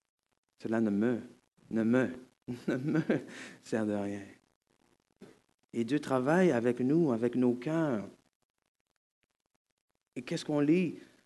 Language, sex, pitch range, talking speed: French, male, 125-190 Hz, 115 wpm